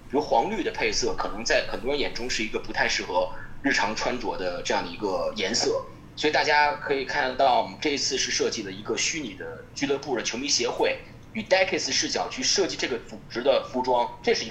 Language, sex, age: Chinese, male, 20-39